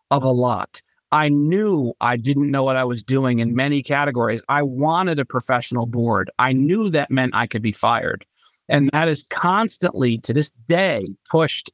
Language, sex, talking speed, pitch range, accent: English, male, 185 wpm, 130-175 Hz, American